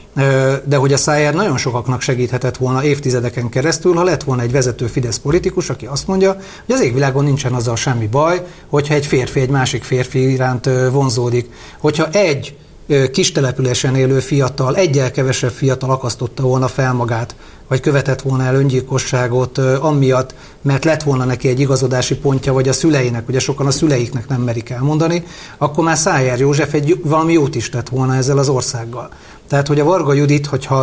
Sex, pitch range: male, 125-150 Hz